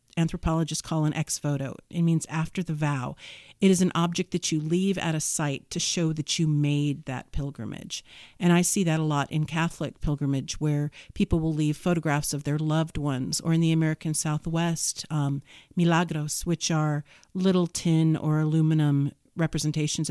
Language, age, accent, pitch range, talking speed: English, 50-69, American, 145-165 Hz, 175 wpm